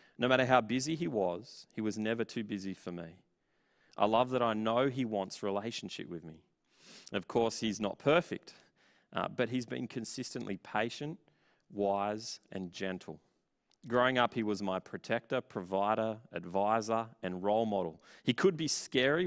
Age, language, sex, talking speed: 30-49, English, male, 160 wpm